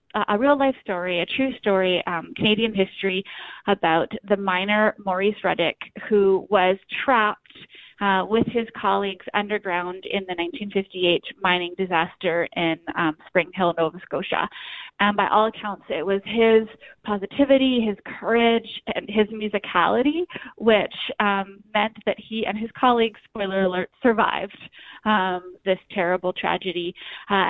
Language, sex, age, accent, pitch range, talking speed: English, female, 30-49, American, 185-220 Hz, 135 wpm